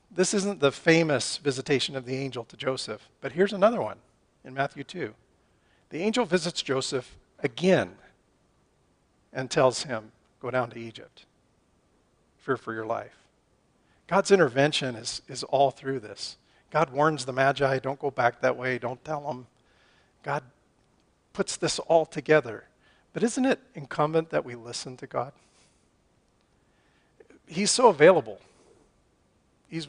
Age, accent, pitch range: 40-59, American, 125-155 Hz